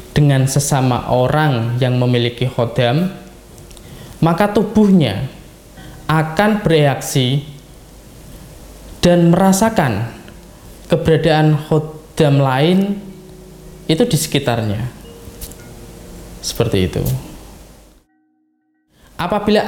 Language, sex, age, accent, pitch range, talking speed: Indonesian, male, 20-39, native, 120-165 Hz, 65 wpm